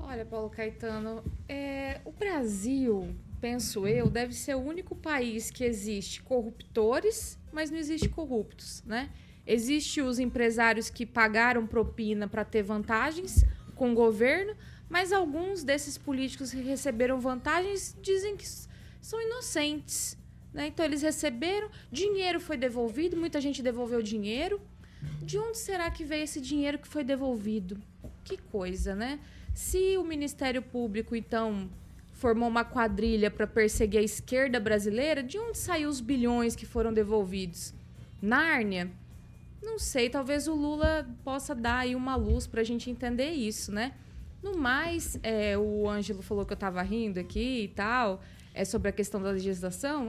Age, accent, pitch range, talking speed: 20-39, Brazilian, 220-305 Hz, 145 wpm